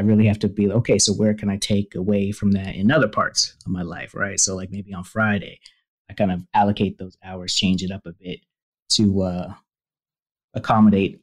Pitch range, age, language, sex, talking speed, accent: 95-110 Hz, 30-49, English, male, 215 wpm, American